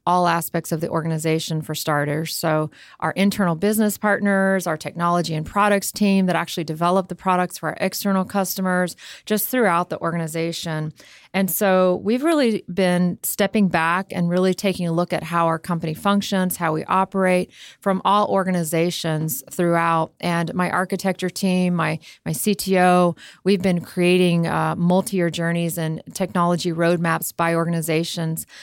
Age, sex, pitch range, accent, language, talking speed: 30-49, female, 165-185 Hz, American, English, 150 wpm